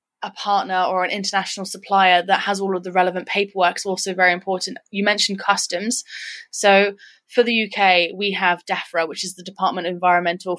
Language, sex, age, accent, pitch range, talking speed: English, female, 20-39, British, 185-210 Hz, 185 wpm